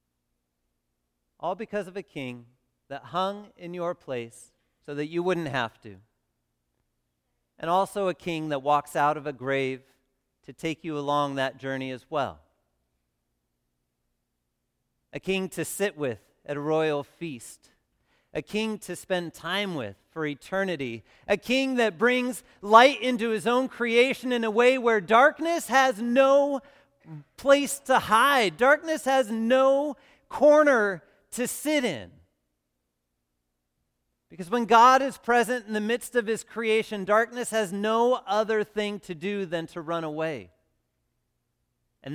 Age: 40-59